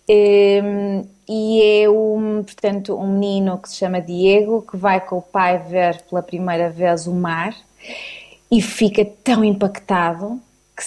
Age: 20-39